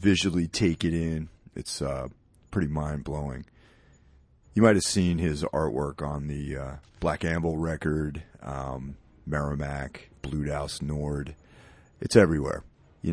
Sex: male